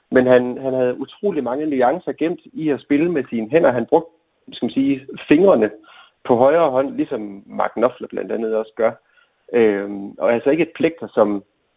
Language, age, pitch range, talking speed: Danish, 30-49, 115-160 Hz, 190 wpm